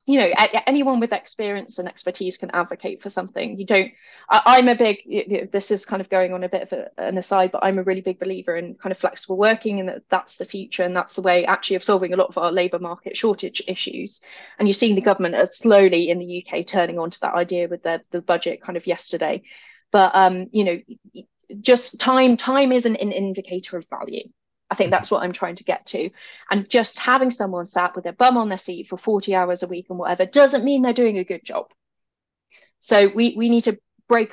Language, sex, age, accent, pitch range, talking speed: English, female, 20-39, British, 180-225 Hz, 235 wpm